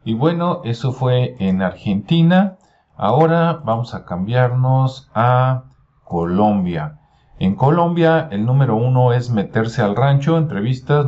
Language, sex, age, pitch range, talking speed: Spanish, male, 40-59, 105-145 Hz, 120 wpm